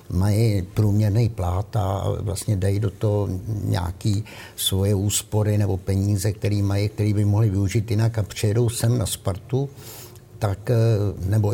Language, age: Czech, 60-79